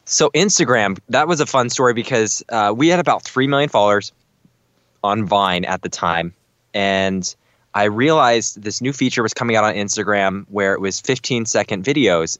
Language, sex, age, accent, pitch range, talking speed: English, male, 20-39, American, 95-120 Hz, 180 wpm